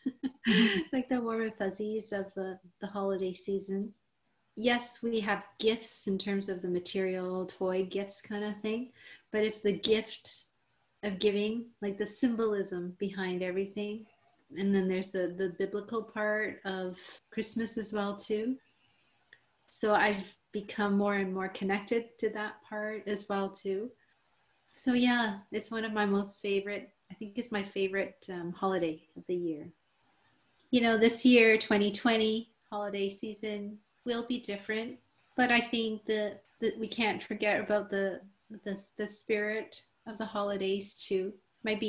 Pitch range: 195-220 Hz